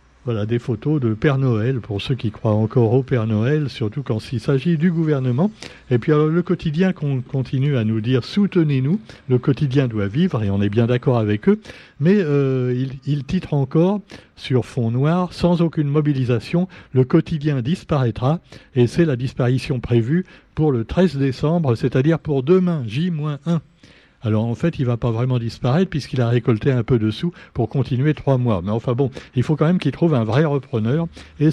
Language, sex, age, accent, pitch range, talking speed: French, male, 60-79, French, 115-150 Hz, 195 wpm